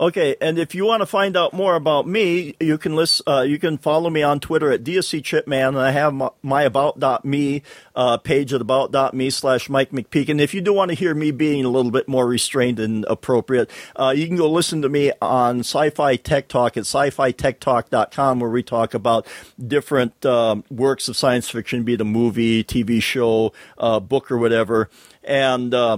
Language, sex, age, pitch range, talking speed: English, male, 50-69, 125-160 Hz, 205 wpm